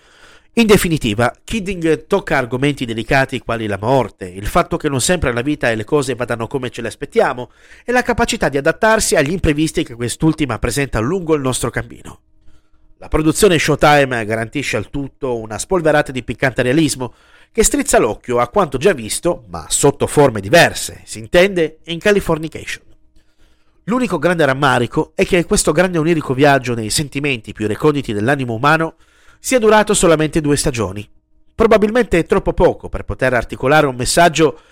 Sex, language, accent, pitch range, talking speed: male, Italian, native, 120-170 Hz, 160 wpm